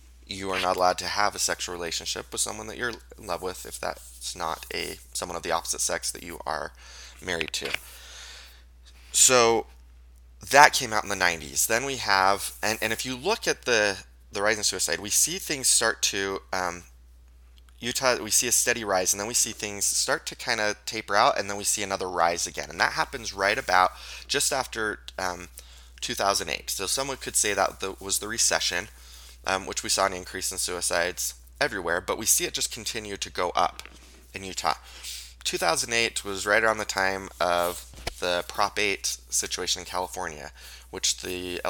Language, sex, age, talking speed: English, male, 20-39, 195 wpm